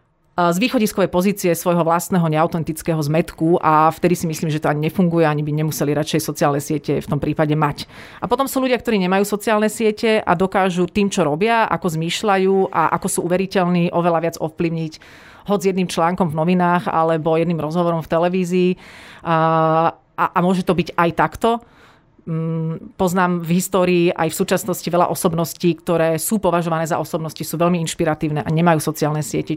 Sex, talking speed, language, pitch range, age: female, 170 wpm, Slovak, 160-185 Hz, 40-59